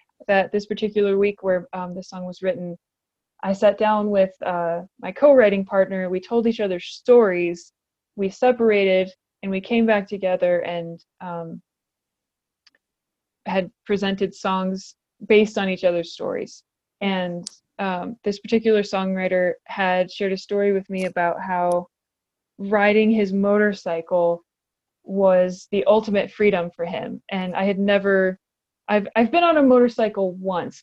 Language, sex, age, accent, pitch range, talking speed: English, female, 20-39, American, 180-210 Hz, 140 wpm